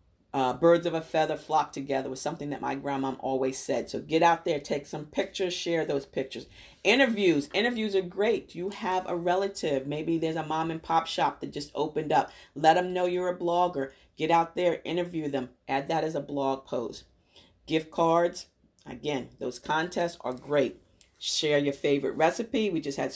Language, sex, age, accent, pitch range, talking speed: English, female, 40-59, American, 140-175 Hz, 190 wpm